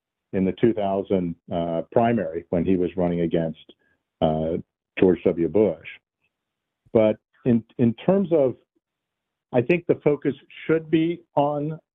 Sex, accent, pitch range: male, American, 95-125 Hz